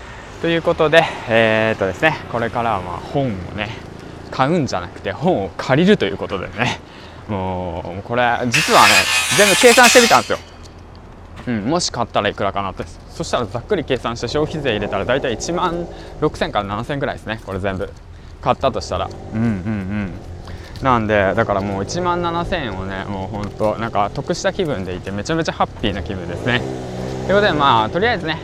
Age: 20-39